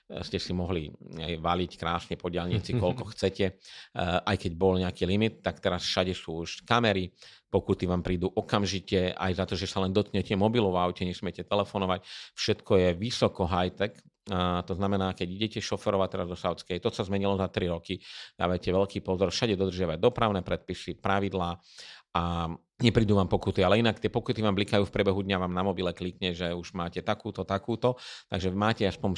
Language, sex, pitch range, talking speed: Slovak, male, 90-105 Hz, 180 wpm